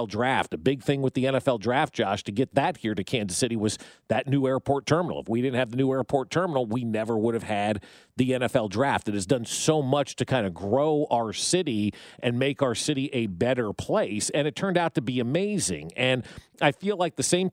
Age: 40-59